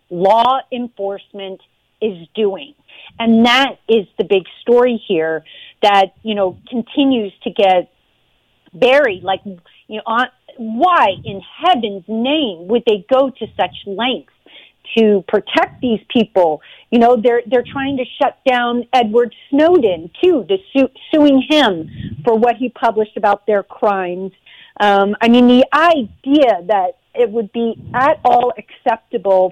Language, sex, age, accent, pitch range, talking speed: English, female, 40-59, American, 205-280 Hz, 140 wpm